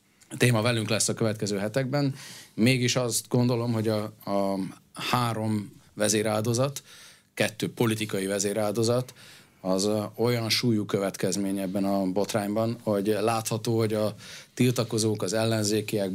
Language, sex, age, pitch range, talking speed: Hungarian, male, 30-49, 95-115 Hz, 115 wpm